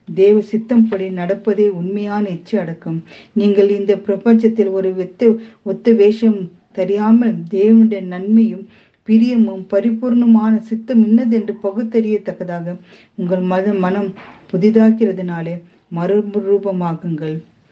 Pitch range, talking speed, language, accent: 185-220 Hz, 100 wpm, Tamil, native